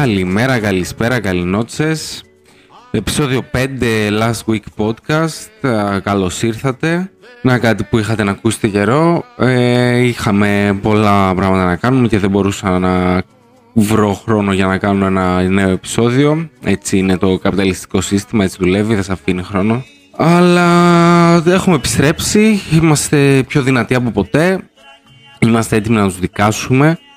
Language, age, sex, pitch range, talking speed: Greek, 20-39, male, 100-135 Hz, 130 wpm